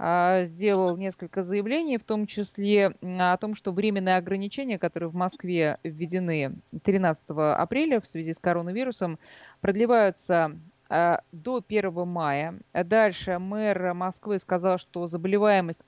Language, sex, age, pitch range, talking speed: Russian, female, 20-39, 160-200 Hz, 115 wpm